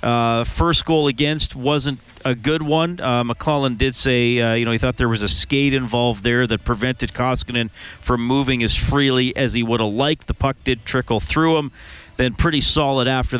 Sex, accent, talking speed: male, American, 200 wpm